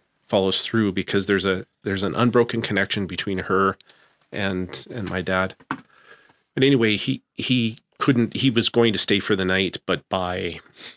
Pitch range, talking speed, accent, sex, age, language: 90-110 Hz, 165 wpm, American, male, 40-59, English